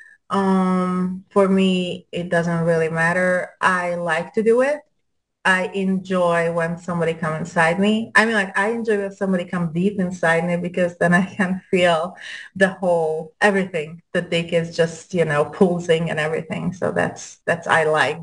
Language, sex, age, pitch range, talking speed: English, female, 30-49, 165-190 Hz, 170 wpm